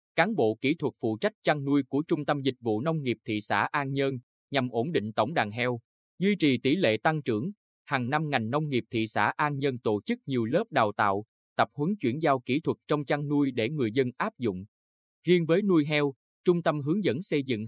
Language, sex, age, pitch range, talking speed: Vietnamese, male, 20-39, 115-150 Hz, 240 wpm